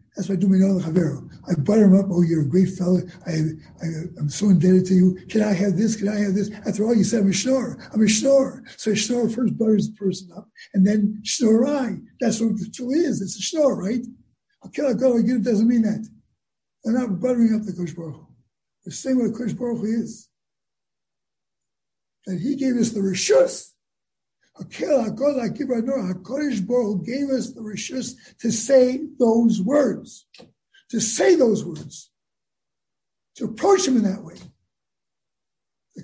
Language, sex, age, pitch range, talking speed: English, male, 60-79, 195-245 Hz, 175 wpm